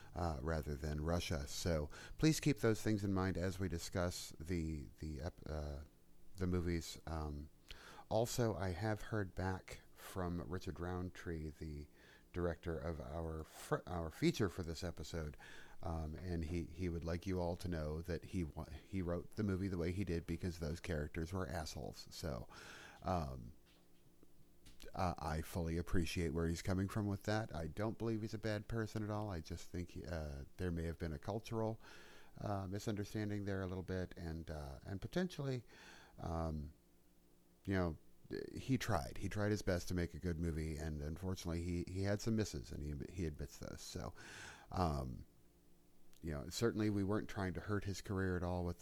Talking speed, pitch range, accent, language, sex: 175 wpm, 80-95 Hz, American, English, male